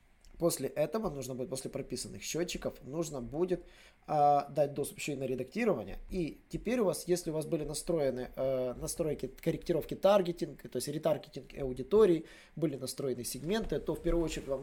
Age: 20-39